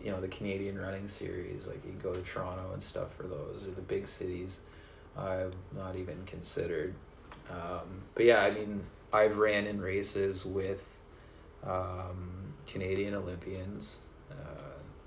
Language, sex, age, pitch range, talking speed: English, male, 20-39, 90-100 Hz, 145 wpm